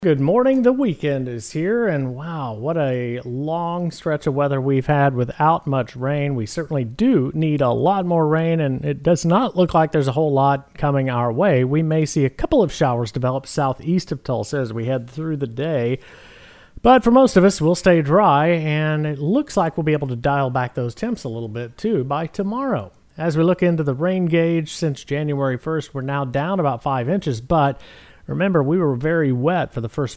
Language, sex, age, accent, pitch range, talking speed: English, male, 40-59, American, 130-165 Hz, 215 wpm